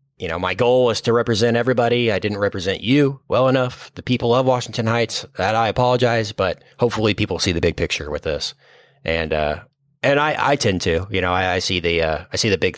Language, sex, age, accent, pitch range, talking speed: English, male, 30-49, American, 95-135 Hz, 230 wpm